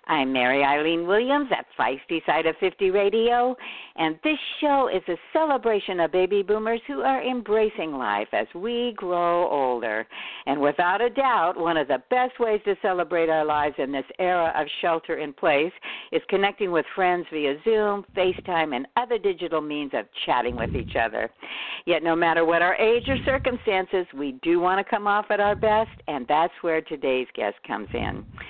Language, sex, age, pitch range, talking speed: English, female, 60-79, 155-215 Hz, 185 wpm